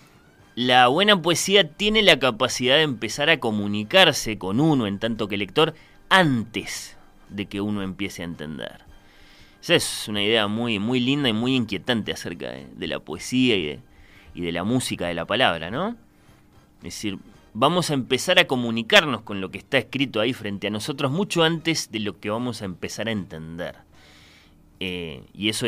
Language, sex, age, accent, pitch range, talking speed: Spanish, male, 20-39, Argentinian, 95-130 Hz, 180 wpm